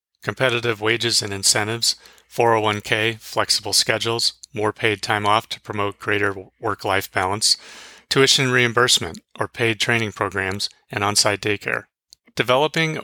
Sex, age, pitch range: male, 30-49, 105-125 Hz